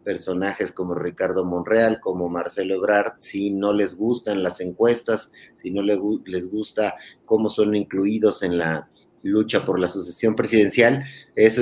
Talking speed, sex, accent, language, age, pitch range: 145 wpm, male, Mexican, Spanish, 30-49, 100-125 Hz